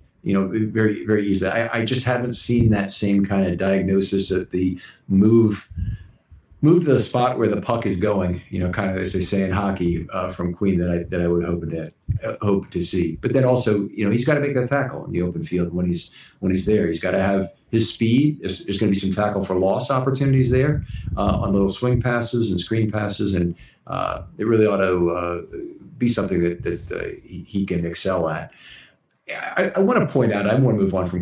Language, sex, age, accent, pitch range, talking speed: English, male, 50-69, American, 90-115 Hz, 235 wpm